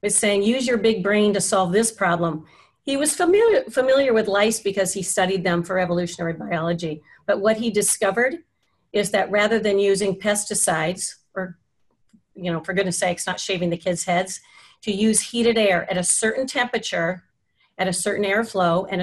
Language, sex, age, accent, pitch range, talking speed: English, female, 40-59, American, 185-220 Hz, 180 wpm